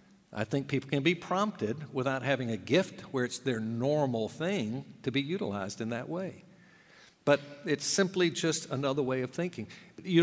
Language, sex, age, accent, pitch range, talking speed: English, male, 50-69, American, 125-165 Hz, 175 wpm